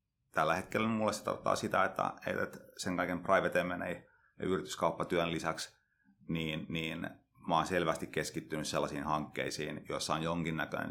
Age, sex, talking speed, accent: 30-49, male, 150 wpm, native